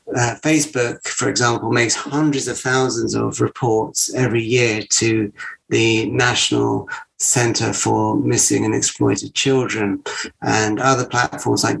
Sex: male